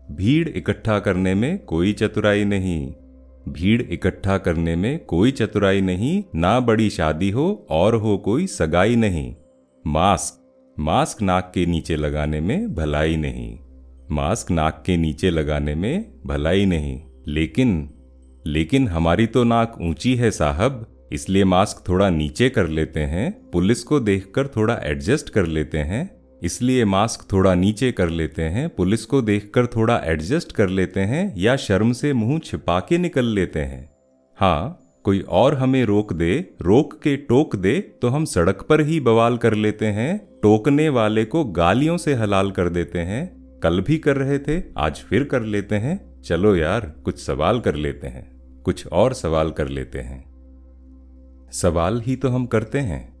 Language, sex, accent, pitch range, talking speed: Hindi, male, native, 75-115 Hz, 160 wpm